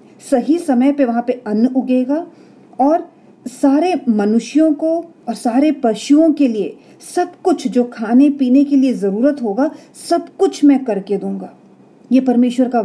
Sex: female